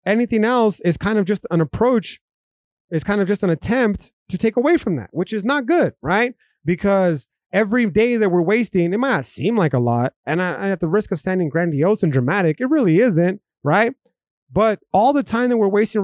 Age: 30-49